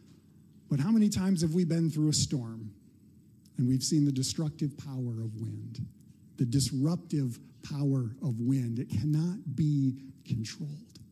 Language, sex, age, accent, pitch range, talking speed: English, male, 50-69, American, 130-170 Hz, 145 wpm